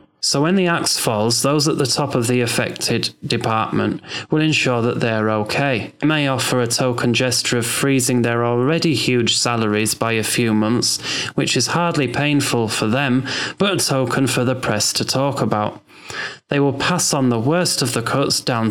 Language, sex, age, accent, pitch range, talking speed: English, male, 20-39, British, 120-145 Hz, 190 wpm